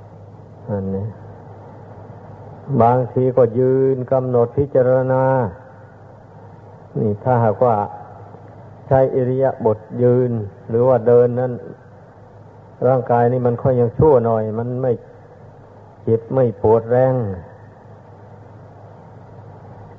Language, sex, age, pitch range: Thai, male, 60-79, 110-130 Hz